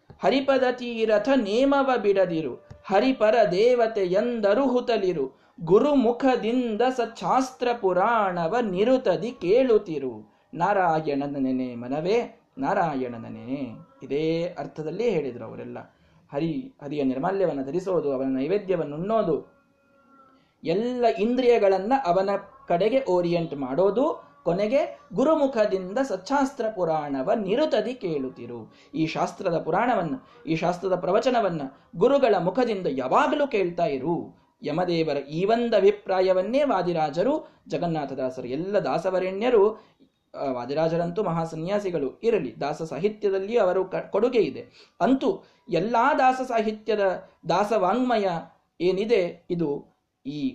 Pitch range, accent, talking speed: 165-245 Hz, native, 90 wpm